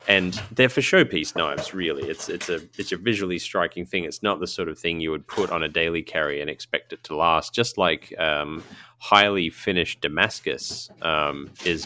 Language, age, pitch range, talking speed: English, 30-49, 75-100 Hz, 200 wpm